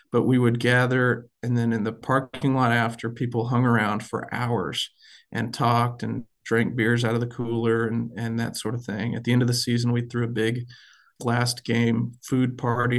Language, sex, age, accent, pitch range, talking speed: English, male, 40-59, American, 115-125 Hz, 210 wpm